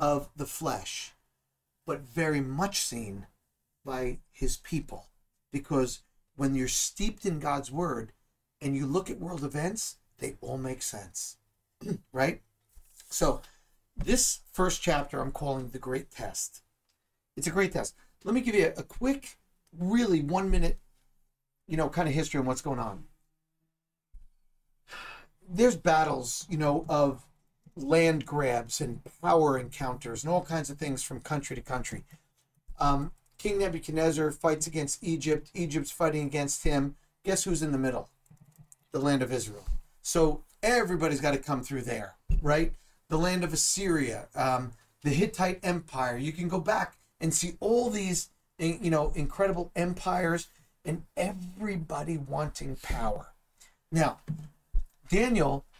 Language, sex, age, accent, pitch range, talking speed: English, male, 50-69, American, 135-170 Hz, 140 wpm